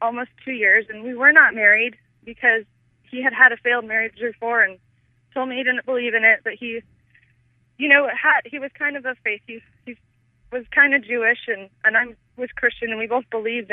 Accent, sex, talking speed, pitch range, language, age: American, female, 220 wpm, 215-260 Hz, English, 20-39